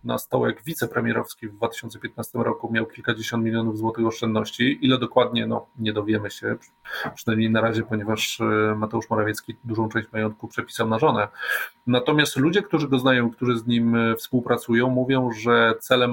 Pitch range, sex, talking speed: 115-130 Hz, male, 155 wpm